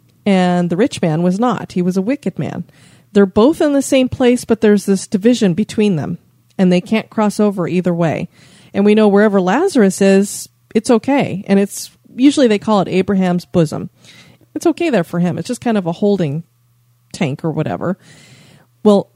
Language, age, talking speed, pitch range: English, 30-49, 190 wpm, 165-210 Hz